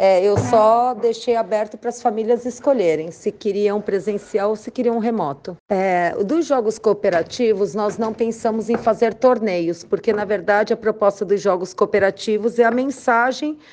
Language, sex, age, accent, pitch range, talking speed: Portuguese, female, 40-59, Brazilian, 205-250 Hz, 155 wpm